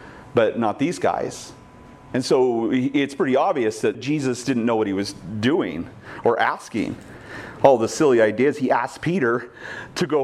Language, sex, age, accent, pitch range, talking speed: English, male, 40-59, American, 110-135 Hz, 165 wpm